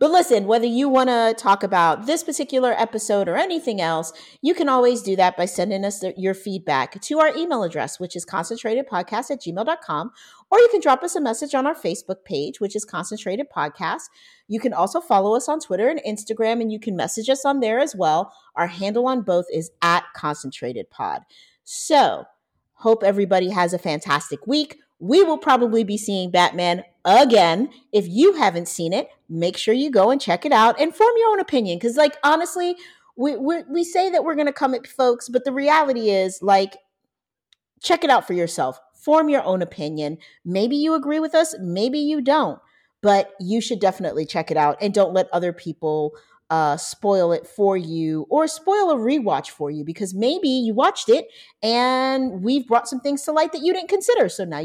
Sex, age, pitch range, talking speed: female, 40-59, 180-295 Hz, 200 wpm